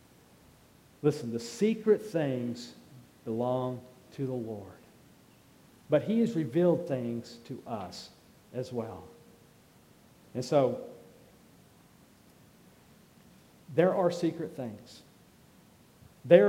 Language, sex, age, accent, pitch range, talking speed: English, male, 50-69, American, 125-180 Hz, 85 wpm